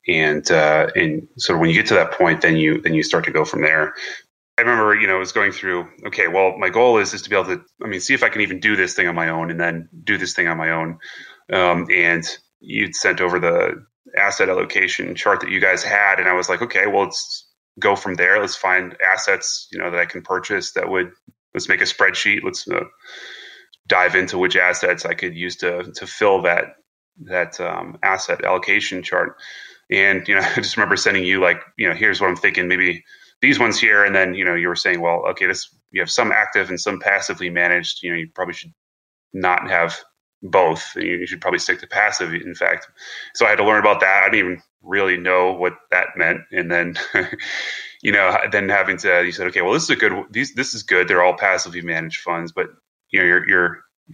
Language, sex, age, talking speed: English, male, 30-49, 235 wpm